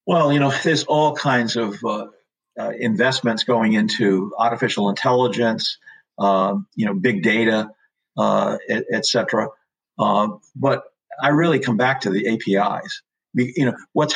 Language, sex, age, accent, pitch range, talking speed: English, male, 50-69, American, 115-150 Hz, 155 wpm